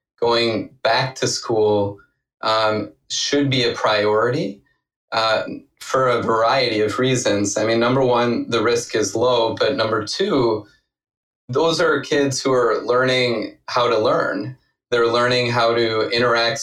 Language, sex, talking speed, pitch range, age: English, male, 145 wpm, 110-135 Hz, 20-39